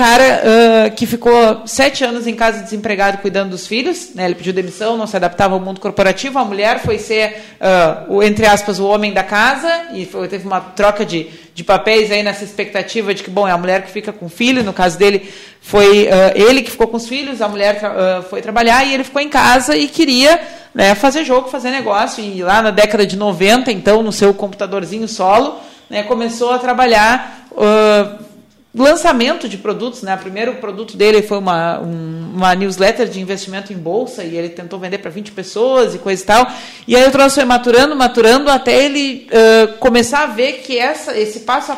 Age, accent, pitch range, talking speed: 40-59, Brazilian, 195-250 Hz, 205 wpm